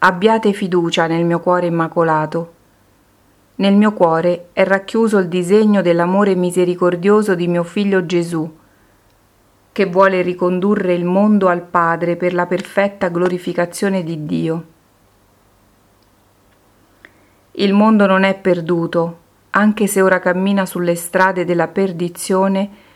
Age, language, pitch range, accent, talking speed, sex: 40-59, Italian, 165-195 Hz, native, 120 wpm, female